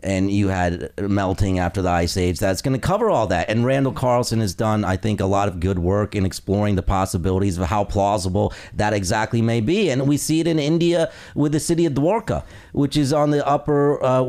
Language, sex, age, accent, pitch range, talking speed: English, male, 40-59, American, 105-145 Hz, 225 wpm